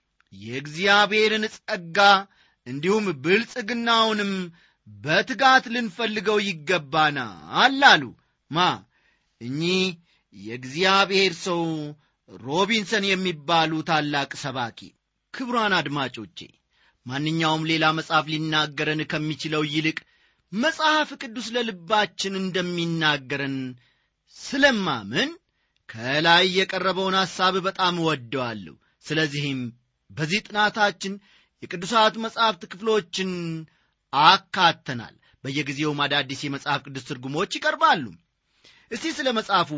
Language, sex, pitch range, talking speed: Amharic, male, 150-215 Hz, 75 wpm